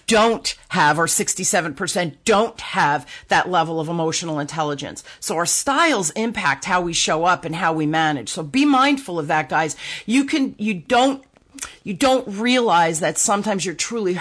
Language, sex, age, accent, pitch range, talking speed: English, female, 40-59, American, 175-220 Hz, 170 wpm